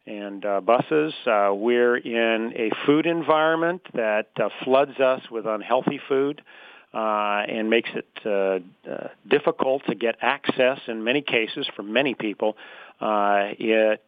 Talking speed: 140 wpm